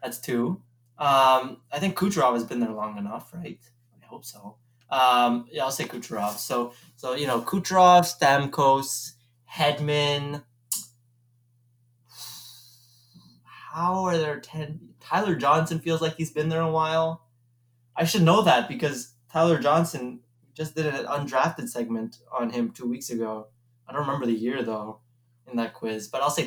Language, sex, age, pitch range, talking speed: English, male, 20-39, 120-145 Hz, 155 wpm